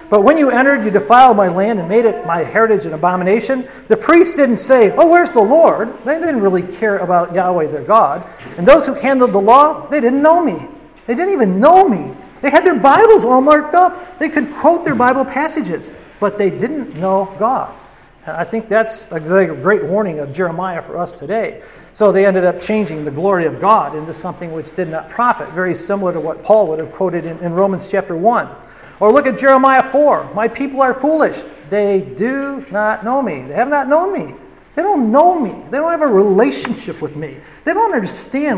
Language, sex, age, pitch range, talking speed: English, male, 40-59, 180-265 Hz, 210 wpm